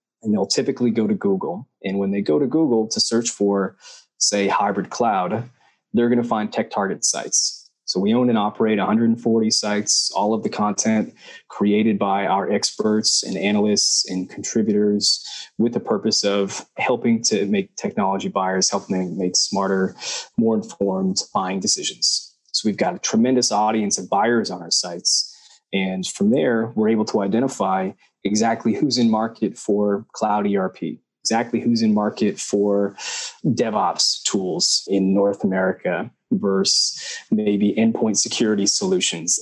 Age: 20-39